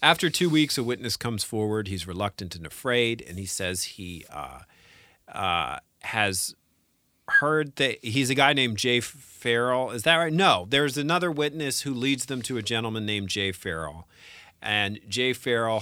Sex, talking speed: male, 170 wpm